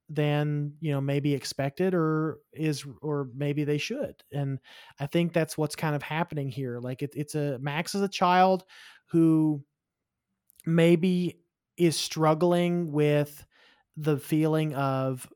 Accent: American